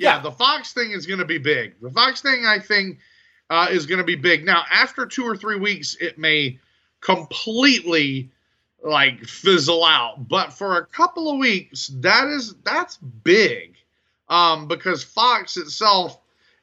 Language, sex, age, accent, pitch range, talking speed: English, male, 30-49, American, 135-205 Hz, 165 wpm